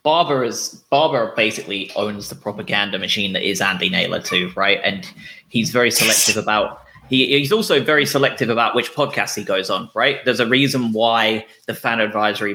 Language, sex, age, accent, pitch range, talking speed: English, male, 20-39, British, 100-120 Hz, 185 wpm